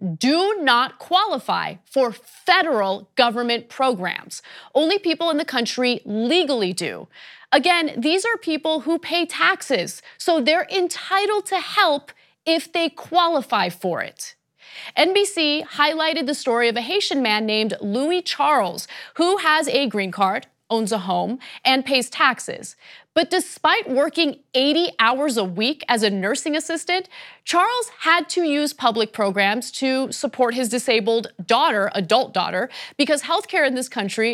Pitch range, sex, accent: 225-320 Hz, female, American